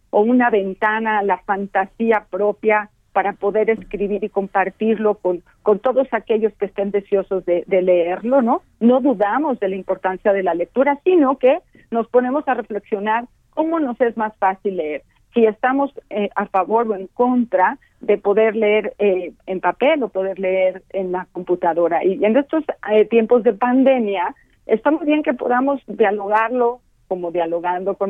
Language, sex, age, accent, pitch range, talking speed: Spanish, female, 50-69, Mexican, 190-240 Hz, 165 wpm